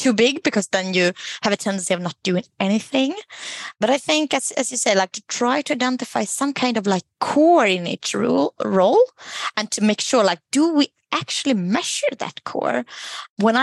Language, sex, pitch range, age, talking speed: English, female, 200-275 Hz, 20-39, 195 wpm